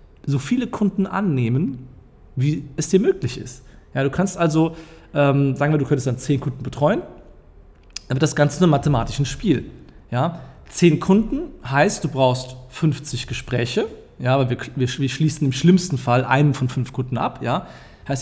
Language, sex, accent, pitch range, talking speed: German, male, German, 120-150 Hz, 180 wpm